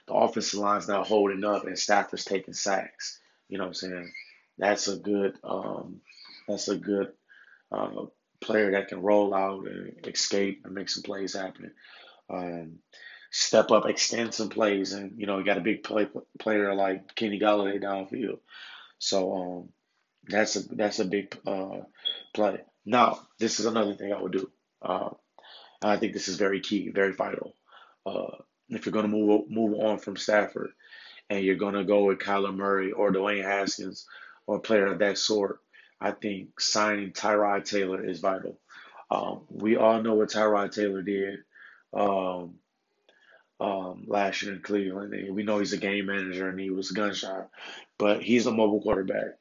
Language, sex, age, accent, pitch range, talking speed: English, male, 20-39, American, 95-105 Hz, 175 wpm